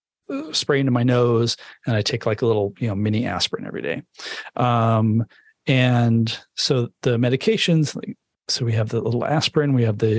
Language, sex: English, male